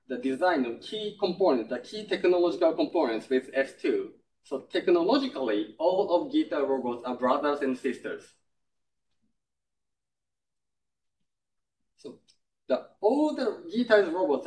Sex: male